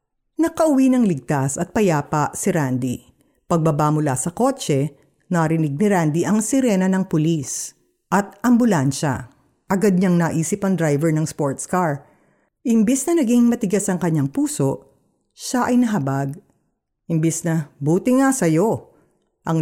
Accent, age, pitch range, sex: native, 50-69, 150-215 Hz, female